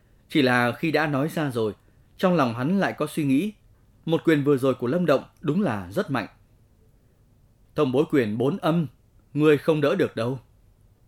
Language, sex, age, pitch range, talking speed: Vietnamese, male, 20-39, 110-155 Hz, 190 wpm